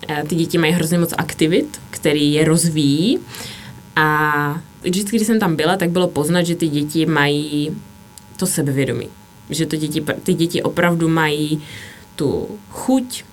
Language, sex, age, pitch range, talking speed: Czech, female, 20-39, 150-175 Hz, 150 wpm